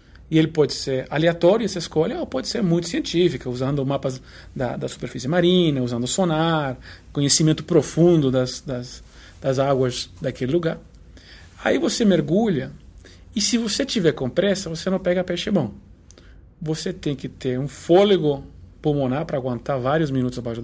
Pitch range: 125-170 Hz